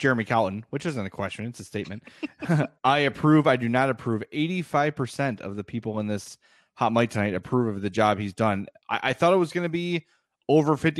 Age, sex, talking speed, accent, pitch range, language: 30-49, male, 215 wpm, American, 110-150 Hz, English